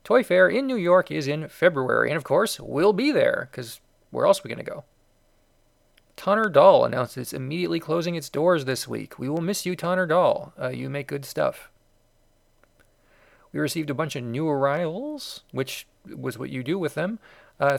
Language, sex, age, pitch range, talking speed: English, male, 40-59, 140-180 Hz, 195 wpm